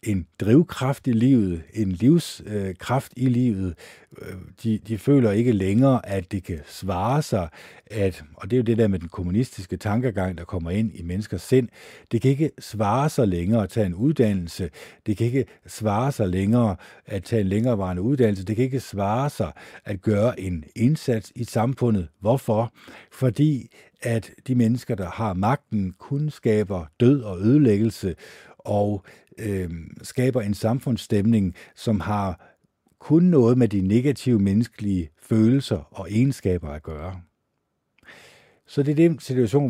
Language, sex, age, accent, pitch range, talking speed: Danish, male, 50-69, native, 95-125 Hz, 155 wpm